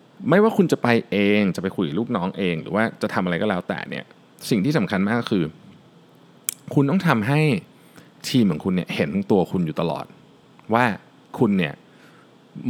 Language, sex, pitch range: Thai, male, 100-150 Hz